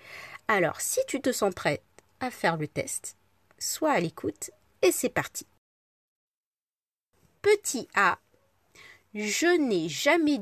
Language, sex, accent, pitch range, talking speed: French, female, French, 185-260 Hz, 120 wpm